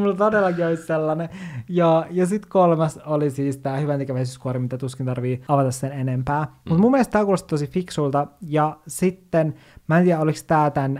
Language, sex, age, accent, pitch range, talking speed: Finnish, male, 20-39, native, 135-165 Hz, 170 wpm